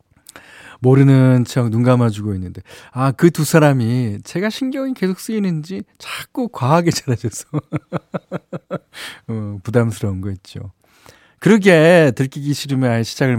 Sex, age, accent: male, 40-59, native